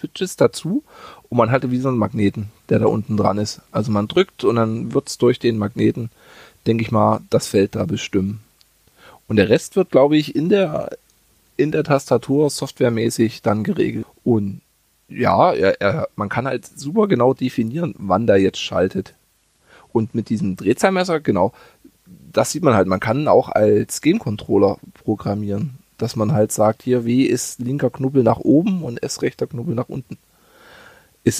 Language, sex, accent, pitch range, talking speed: German, male, German, 110-150 Hz, 170 wpm